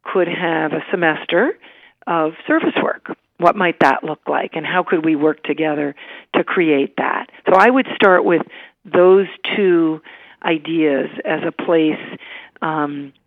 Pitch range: 155-195 Hz